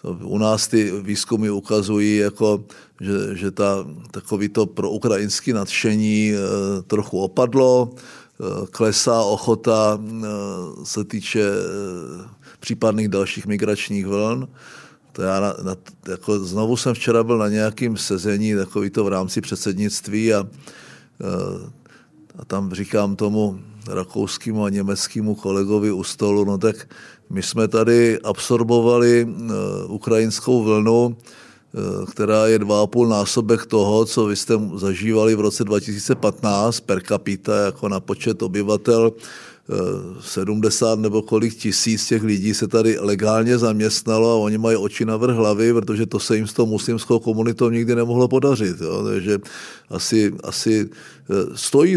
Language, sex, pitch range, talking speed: Czech, male, 100-115 Hz, 130 wpm